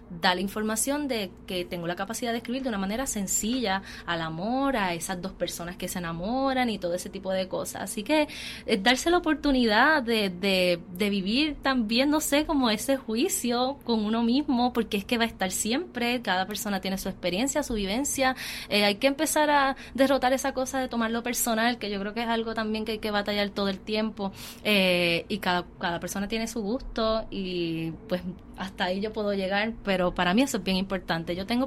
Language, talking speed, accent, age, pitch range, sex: Spanish, 210 wpm, American, 20-39, 185-240 Hz, female